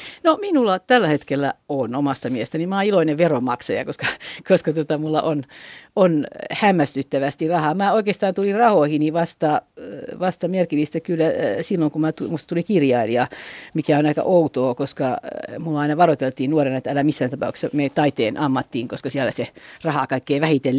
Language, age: Finnish, 50-69